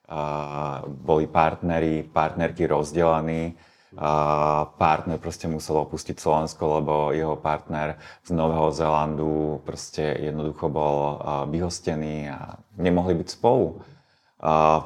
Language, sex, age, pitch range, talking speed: Slovak, male, 30-49, 75-85 Hz, 95 wpm